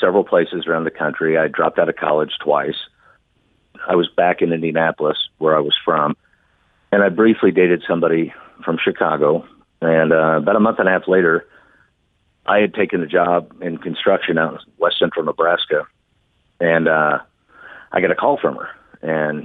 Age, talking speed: 50-69, 175 wpm